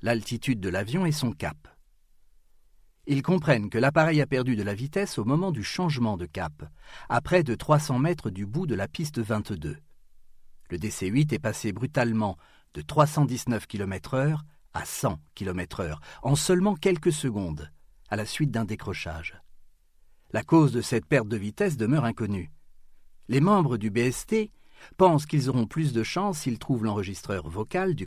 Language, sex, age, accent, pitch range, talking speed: French, male, 50-69, French, 95-145 Hz, 160 wpm